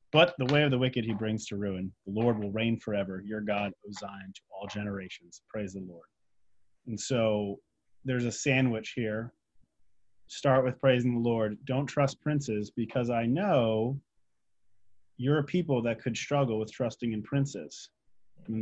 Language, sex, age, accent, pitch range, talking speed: English, male, 30-49, American, 105-135 Hz, 170 wpm